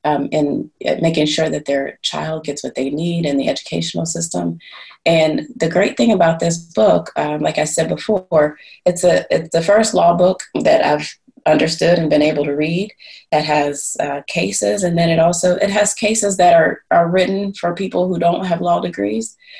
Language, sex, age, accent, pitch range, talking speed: English, female, 30-49, American, 140-180 Hz, 195 wpm